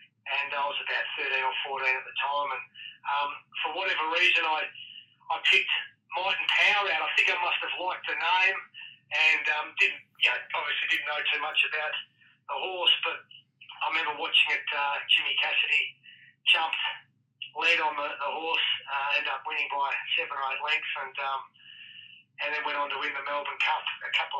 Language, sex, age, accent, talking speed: English, male, 30-49, Australian, 195 wpm